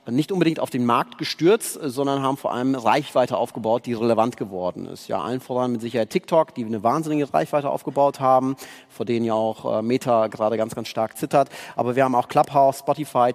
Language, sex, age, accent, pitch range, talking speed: German, male, 40-59, German, 130-175 Hz, 200 wpm